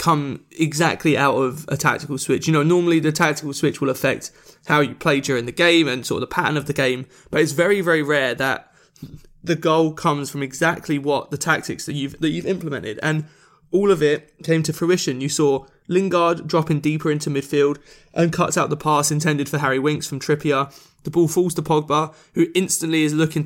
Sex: male